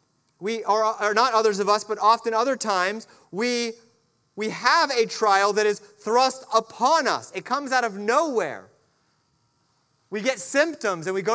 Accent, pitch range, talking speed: American, 160-240 Hz, 170 wpm